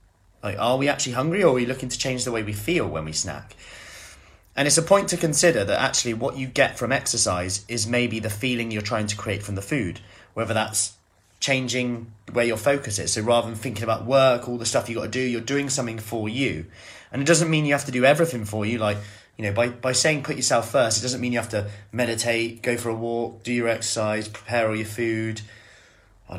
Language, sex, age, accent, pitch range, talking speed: English, male, 30-49, British, 105-130 Hz, 240 wpm